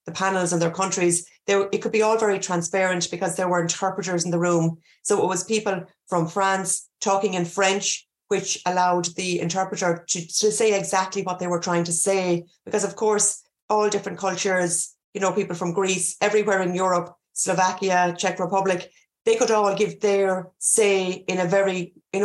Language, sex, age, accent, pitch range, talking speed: English, female, 30-49, Irish, 175-200 Hz, 185 wpm